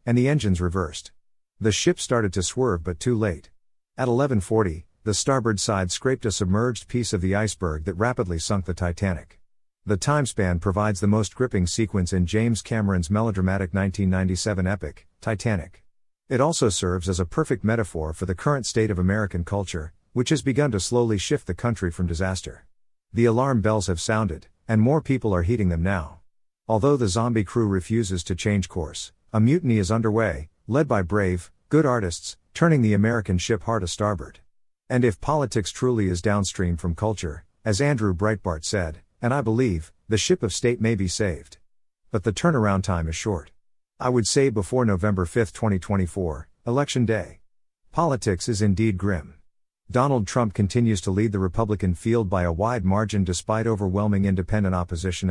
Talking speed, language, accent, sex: 175 wpm, English, American, male